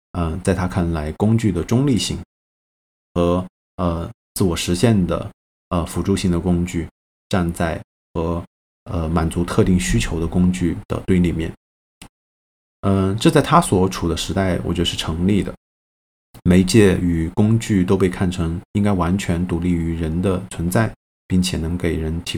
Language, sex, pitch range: Chinese, male, 85-95 Hz